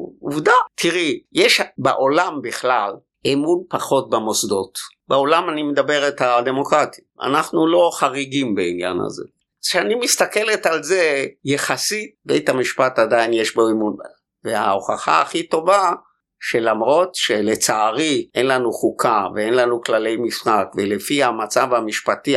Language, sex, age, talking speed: Hebrew, male, 50-69, 120 wpm